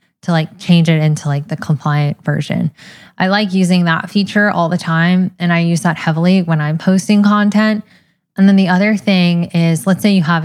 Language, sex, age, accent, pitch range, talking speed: English, female, 10-29, American, 155-185 Hz, 205 wpm